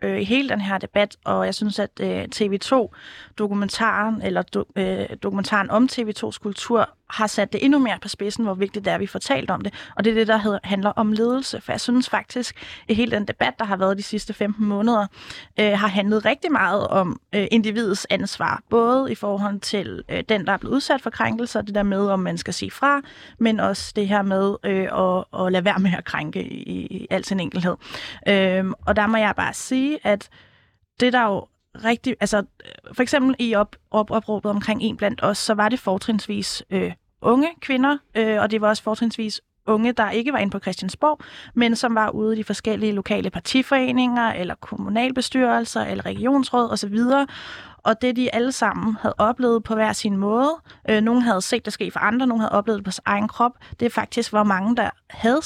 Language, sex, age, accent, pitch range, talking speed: Danish, female, 30-49, native, 205-235 Hz, 200 wpm